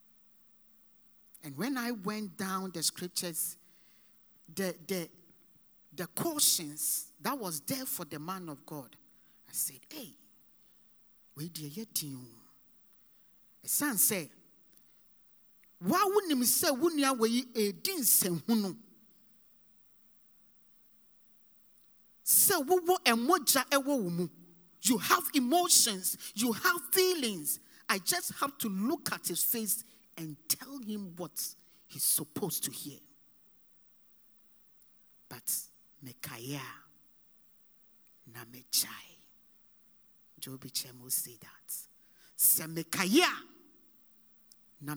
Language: English